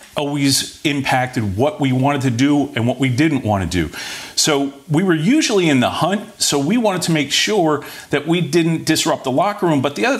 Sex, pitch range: male, 120-160 Hz